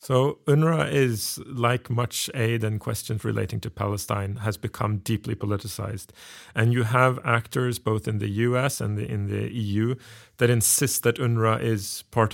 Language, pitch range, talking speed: English, 105-120 Hz, 160 wpm